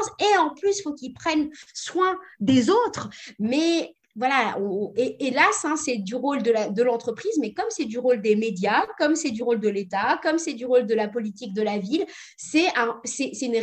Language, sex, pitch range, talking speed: French, female, 210-270 Hz, 220 wpm